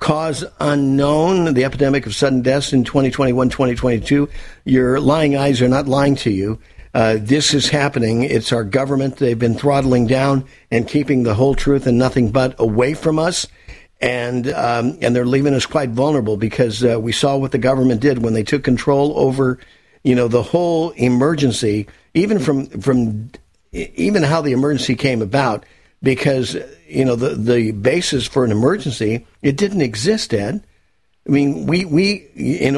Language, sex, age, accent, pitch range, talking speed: English, male, 50-69, American, 125-150 Hz, 170 wpm